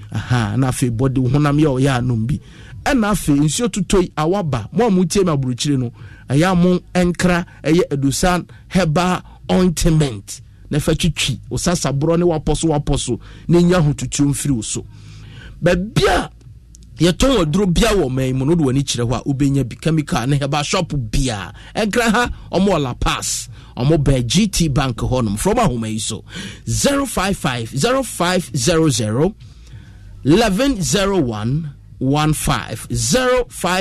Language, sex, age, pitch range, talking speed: English, male, 50-69, 125-180 Hz, 125 wpm